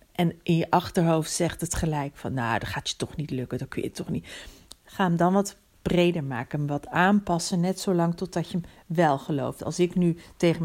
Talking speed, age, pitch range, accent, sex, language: 220 wpm, 40-59, 165-205 Hz, Dutch, female, Dutch